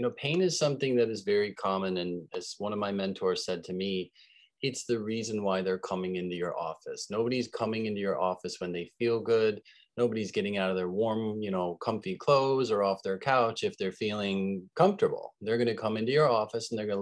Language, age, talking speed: English, 30-49, 225 wpm